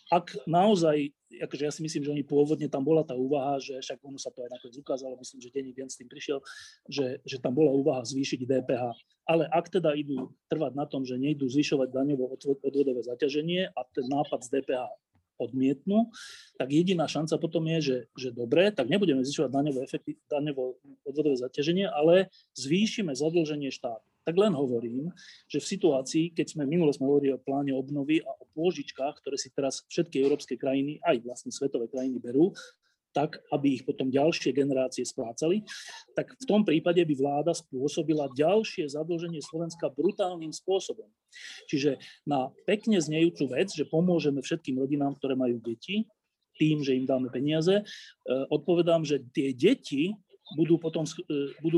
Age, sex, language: 30-49, male, Slovak